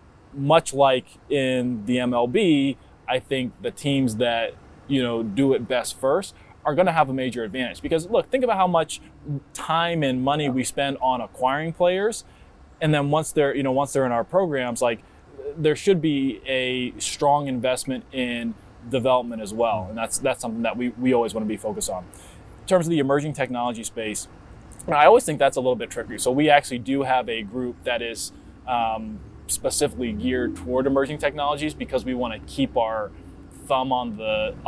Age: 20-39